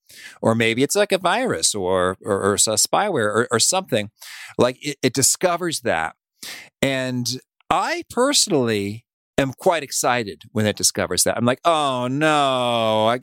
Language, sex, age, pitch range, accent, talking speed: English, male, 40-59, 95-130 Hz, American, 155 wpm